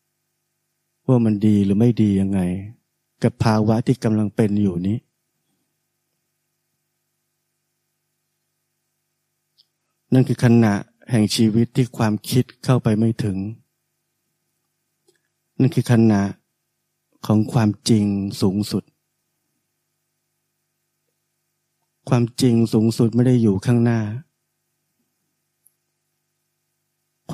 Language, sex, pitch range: Thai, male, 110-170 Hz